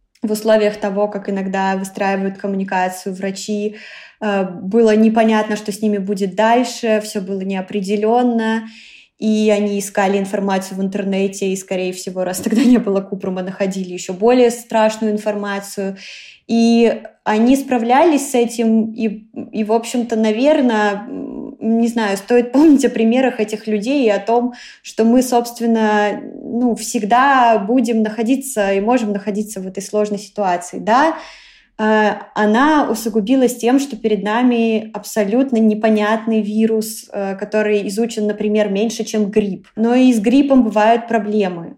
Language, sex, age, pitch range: Russian, female, 20-39, 205-235 Hz